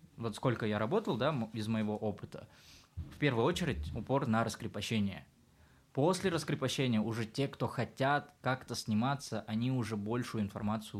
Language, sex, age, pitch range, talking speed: Russian, male, 20-39, 105-130 Hz, 140 wpm